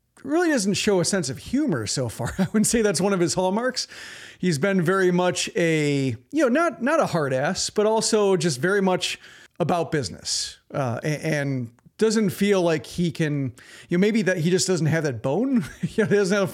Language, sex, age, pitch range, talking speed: English, male, 40-59, 145-180 Hz, 205 wpm